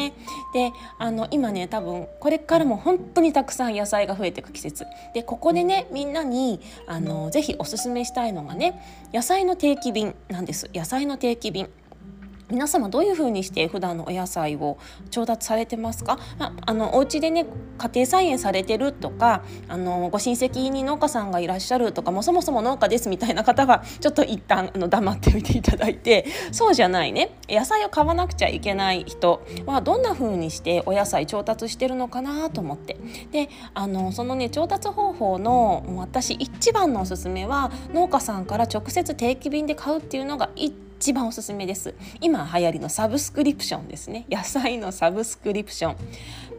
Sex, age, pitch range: female, 20-39, 195-310 Hz